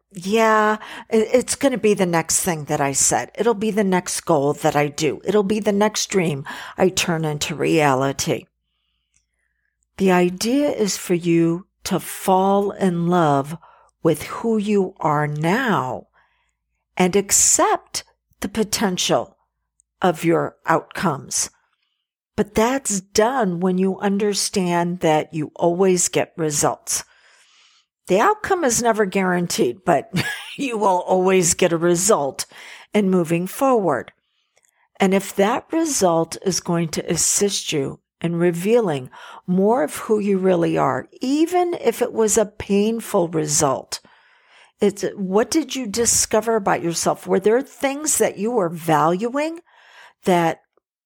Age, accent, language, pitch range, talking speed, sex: 50-69, American, English, 170-220 Hz, 135 wpm, female